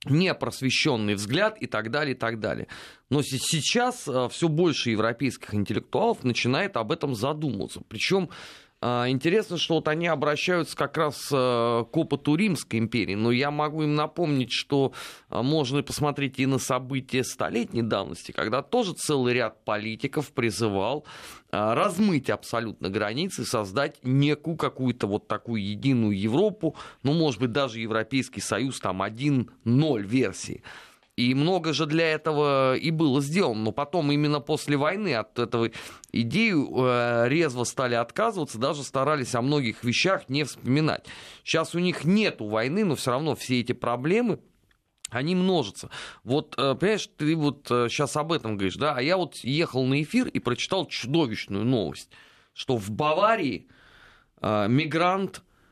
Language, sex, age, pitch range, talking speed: Russian, male, 30-49, 120-160 Hz, 140 wpm